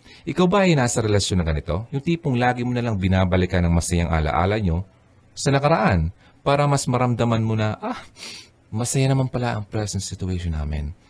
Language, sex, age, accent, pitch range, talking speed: Filipino, male, 30-49, native, 85-125 Hz, 180 wpm